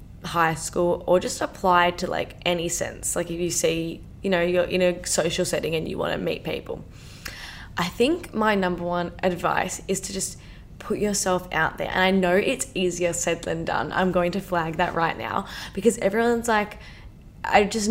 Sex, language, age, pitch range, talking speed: female, English, 10-29, 175-200 Hz, 200 wpm